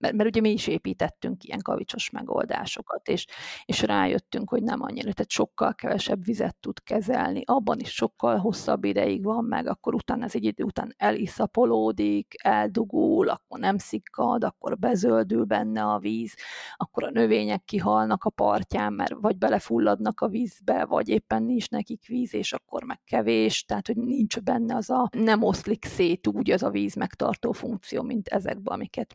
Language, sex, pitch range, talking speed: Hungarian, female, 195-250 Hz, 170 wpm